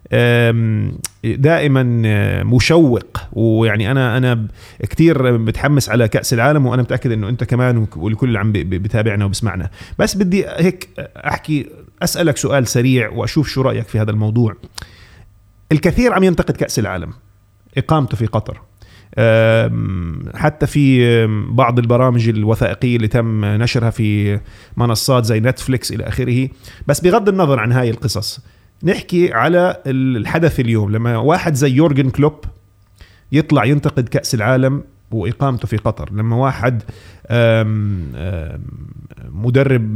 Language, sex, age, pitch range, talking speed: Arabic, male, 30-49, 110-140 Hz, 120 wpm